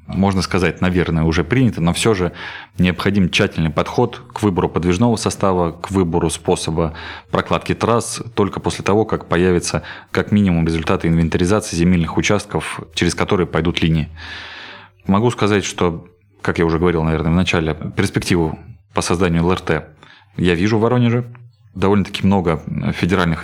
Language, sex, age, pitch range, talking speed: Russian, male, 20-39, 85-100 Hz, 145 wpm